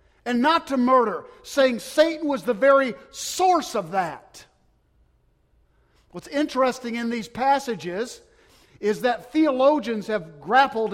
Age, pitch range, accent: 50-69, 205-280 Hz, American